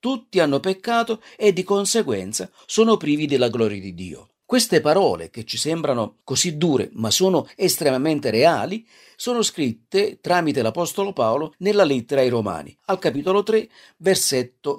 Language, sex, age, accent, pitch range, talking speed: Italian, male, 50-69, native, 125-185 Hz, 145 wpm